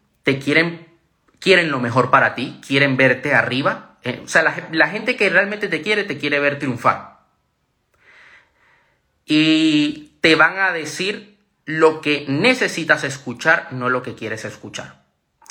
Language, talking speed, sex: Spanish, 145 wpm, male